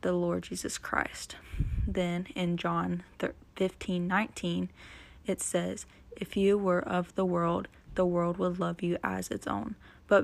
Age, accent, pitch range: 20-39, American, 170-185 Hz